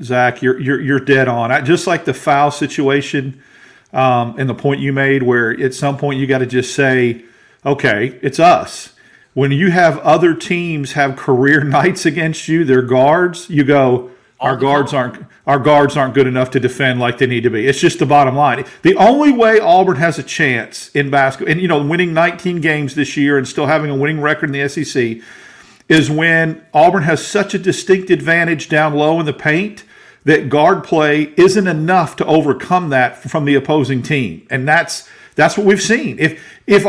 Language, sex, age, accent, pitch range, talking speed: English, male, 50-69, American, 140-185 Hz, 200 wpm